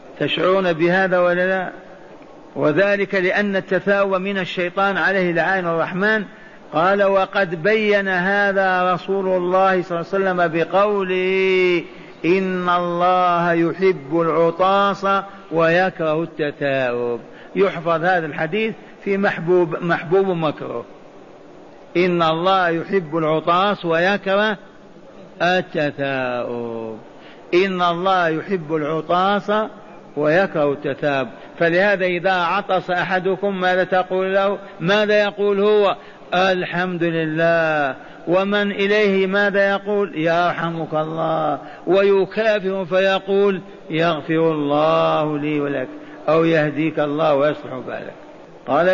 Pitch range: 165-195 Hz